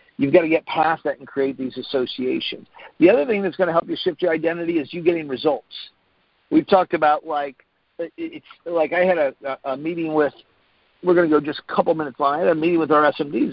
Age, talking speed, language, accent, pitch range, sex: 50-69, 235 wpm, English, American, 135-160 Hz, male